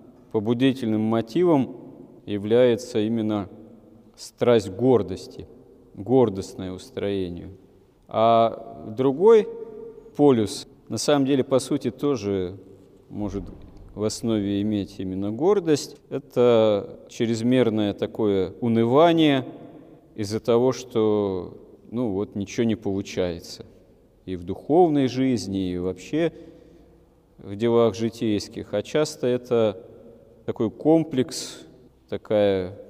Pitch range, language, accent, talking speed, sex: 105-130 Hz, Russian, native, 90 wpm, male